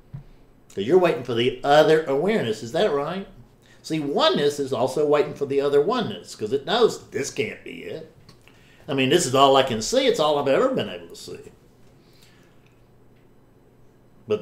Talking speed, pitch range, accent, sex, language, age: 180 wpm, 115-155 Hz, American, male, English, 60-79